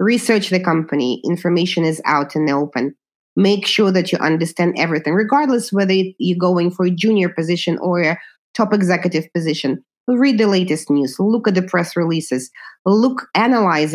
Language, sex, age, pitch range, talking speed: English, female, 30-49, 165-200 Hz, 170 wpm